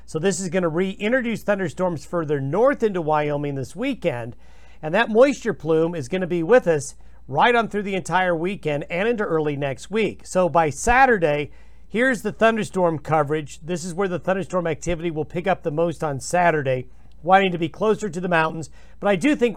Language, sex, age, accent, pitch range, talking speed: English, male, 50-69, American, 155-195 Hz, 200 wpm